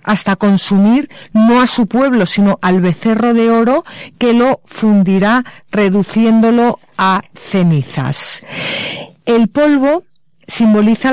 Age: 50-69